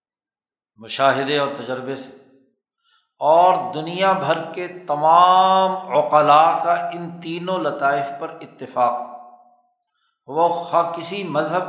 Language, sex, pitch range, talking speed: Urdu, male, 140-180 Hz, 100 wpm